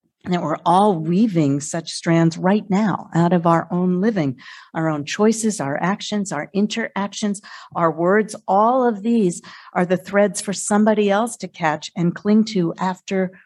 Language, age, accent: English, 50-69, American